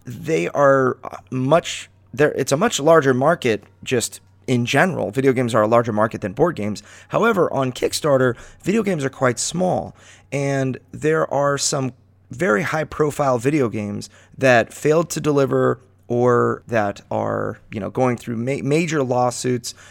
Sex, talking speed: male, 155 wpm